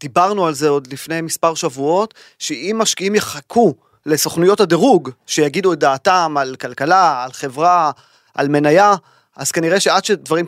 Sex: male